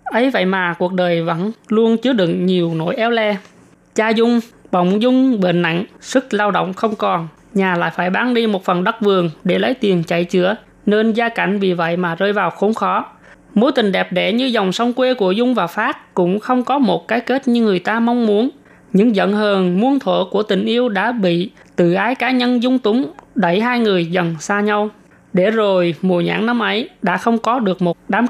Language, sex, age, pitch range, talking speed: Vietnamese, female, 20-39, 180-235 Hz, 225 wpm